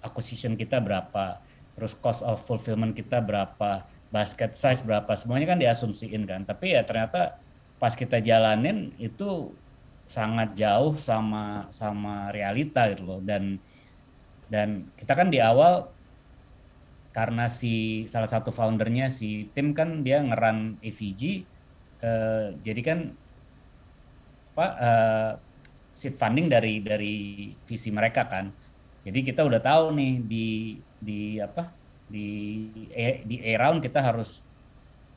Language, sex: Indonesian, male